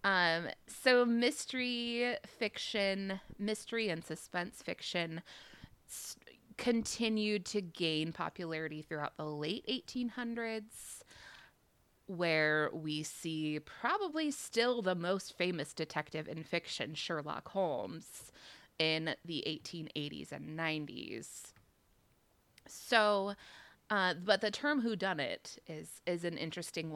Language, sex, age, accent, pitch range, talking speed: English, female, 20-39, American, 160-220 Hz, 105 wpm